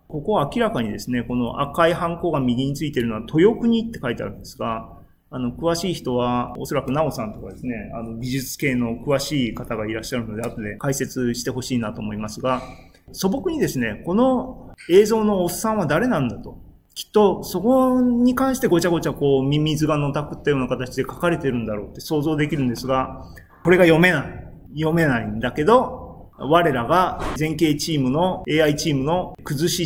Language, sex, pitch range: Japanese, male, 125-175 Hz